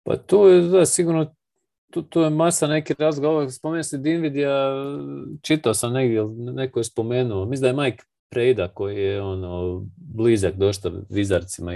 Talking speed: 165 wpm